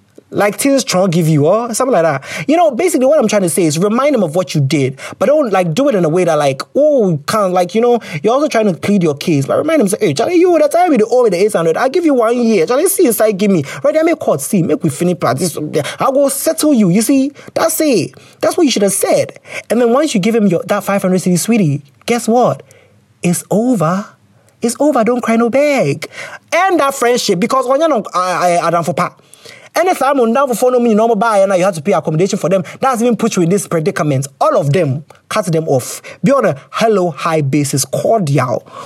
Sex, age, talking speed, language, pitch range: male, 20-39, 250 wpm, English, 160-255 Hz